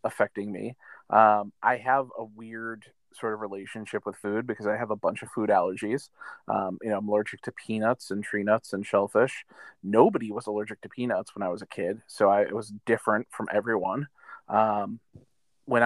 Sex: male